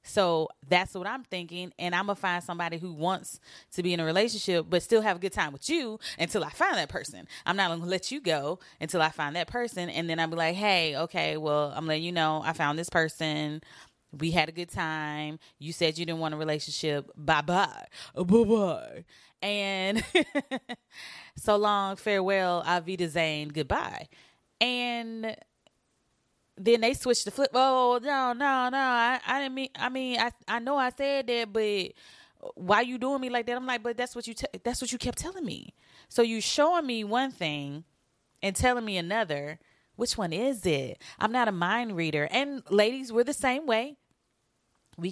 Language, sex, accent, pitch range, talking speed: English, female, American, 170-240 Hz, 200 wpm